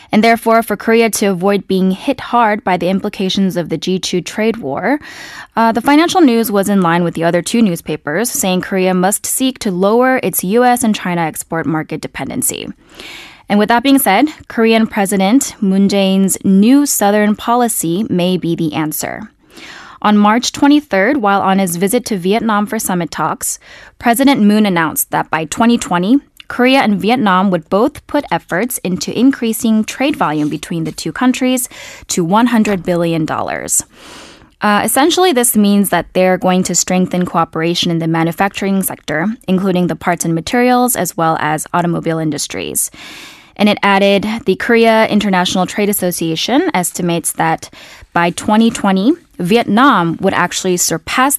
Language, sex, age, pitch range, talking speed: English, female, 10-29, 175-230 Hz, 155 wpm